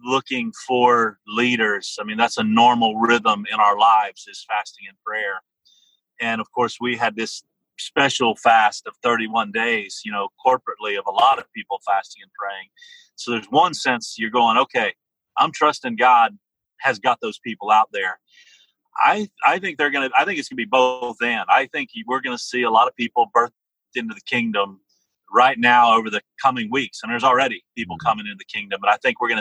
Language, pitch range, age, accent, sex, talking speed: English, 120-170 Hz, 40-59, American, male, 200 wpm